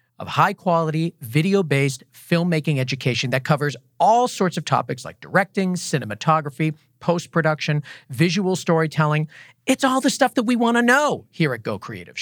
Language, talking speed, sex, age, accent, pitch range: English, 145 wpm, male, 40-59, American, 130-185 Hz